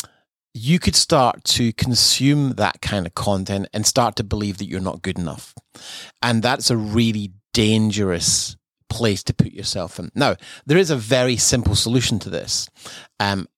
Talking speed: 170 wpm